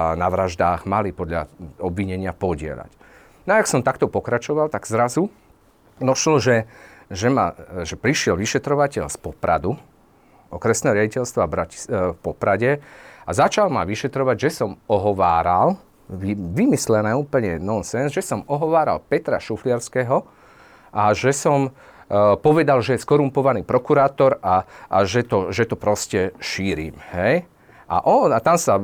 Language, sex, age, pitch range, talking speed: Slovak, male, 40-59, 100-135 Hz, 135 wpm